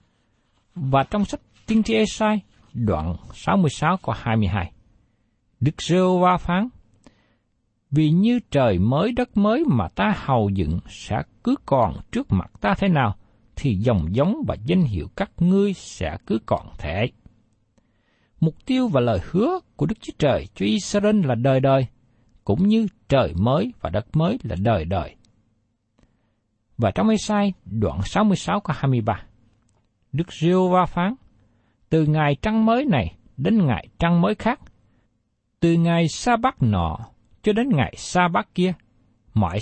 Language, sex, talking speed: Vietnamese, male, 145 wpm